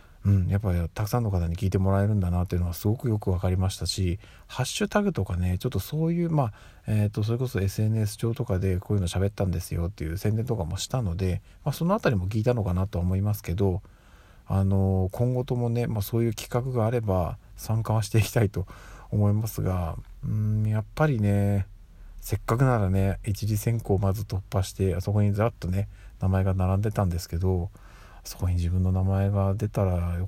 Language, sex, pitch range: Japanese, male, 90-110 Hz